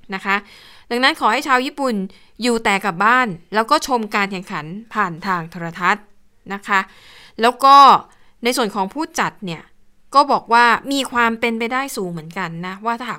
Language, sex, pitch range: Thai, female, 190-235 Hz